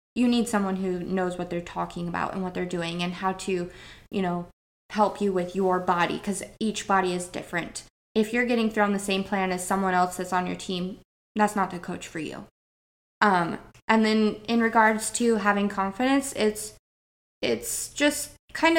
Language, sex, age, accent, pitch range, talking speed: English, female, 20-39, American, 185-215 Hz, 190 wpm